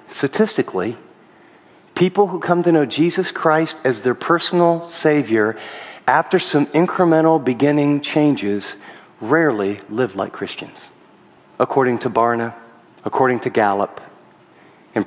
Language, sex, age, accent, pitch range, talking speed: English, male, 50-69, American, 140-195 Hz, 110 wpm